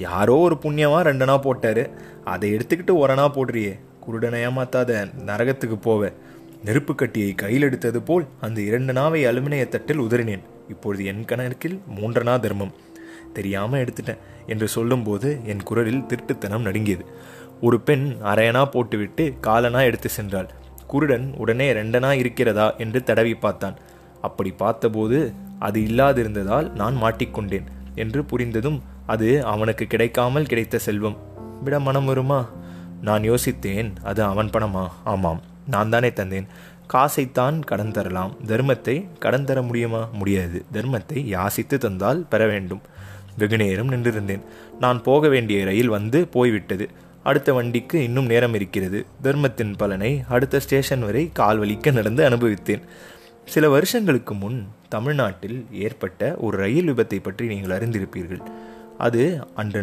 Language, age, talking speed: Tamil, 20-39, 125 wpm